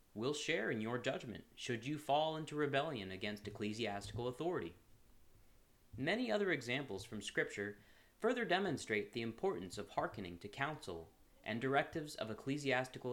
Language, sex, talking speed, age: English, male, 135 wpm, 30-49